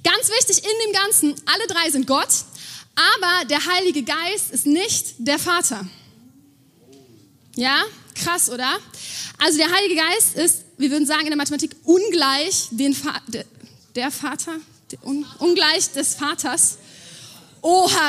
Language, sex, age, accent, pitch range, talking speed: German, female, 20-39, German, 265-360 Hz, 135 wpm